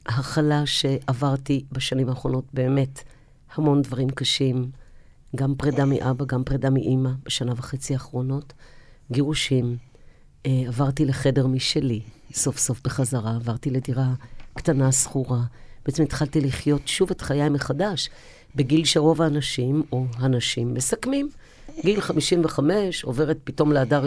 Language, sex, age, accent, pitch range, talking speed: Hebrew, female, 50-69, native, 130-155 Hz, 115 wpm